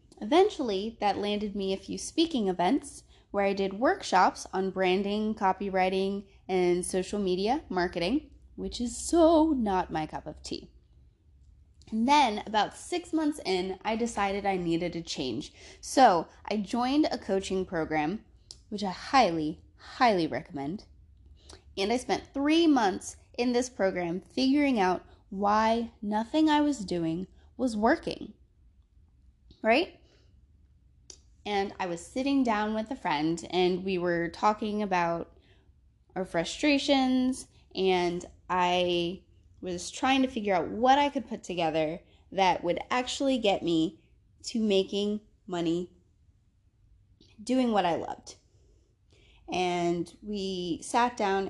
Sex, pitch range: female, 175-235 Hz